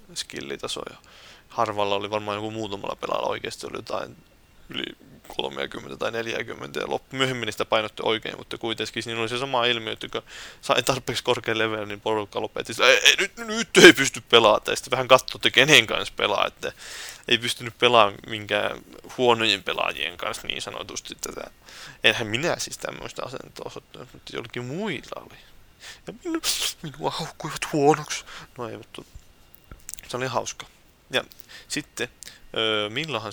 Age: 20-39